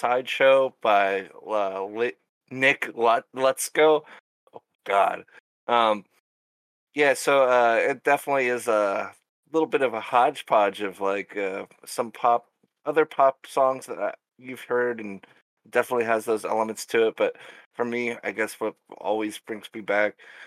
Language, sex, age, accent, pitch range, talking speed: English, male, 20-39, American, 100-130 Hz, 145 wpm